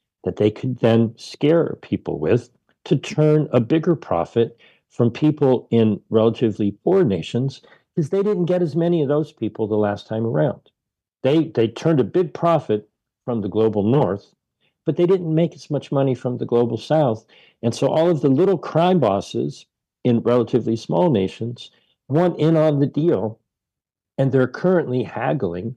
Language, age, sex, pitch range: English, 50-69, male, 110-150 Hz